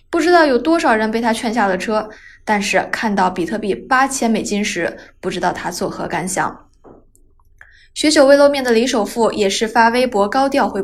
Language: Chinese